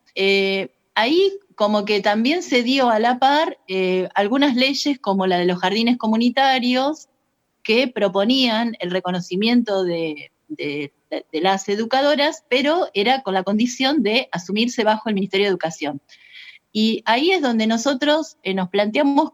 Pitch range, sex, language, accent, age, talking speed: 185-250 Hz, female, Spanish, Argentinian, 20-39, 145 wpm